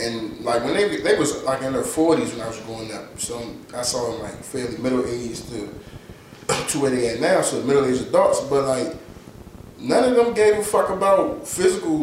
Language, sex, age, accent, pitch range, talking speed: English, male, 20-39, American, 135-185 Hz, 215 wpm